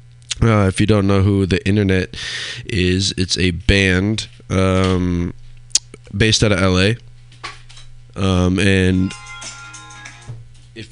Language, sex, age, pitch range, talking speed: English, male, 20-39, 95-120 Hz, 110 wpm